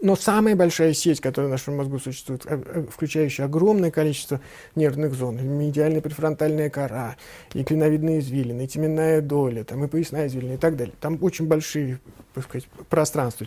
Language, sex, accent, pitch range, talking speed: Russian, male, native, 145-185 Hz, 160 wpm